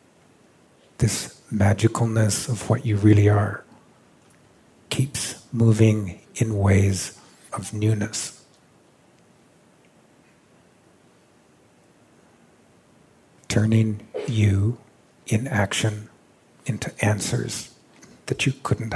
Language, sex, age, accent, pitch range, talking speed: English, male, 50-69, American, 100-115 Hz, 70 wpm